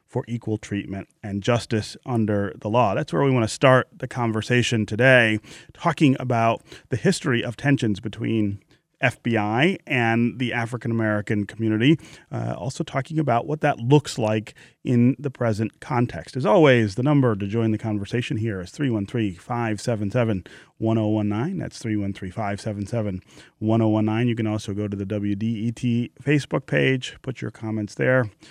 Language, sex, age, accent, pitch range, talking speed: English, male, 30-49, American, 105-130 Hz, 140 wpm